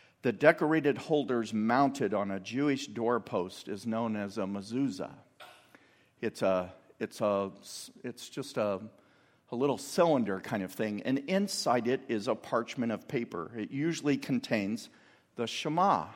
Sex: male